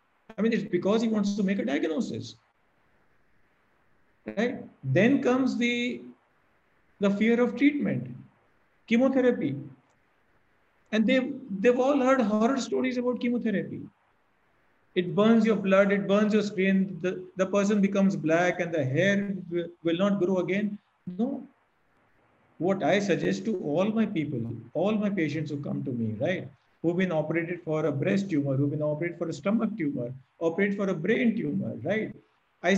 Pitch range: 155-215 Hz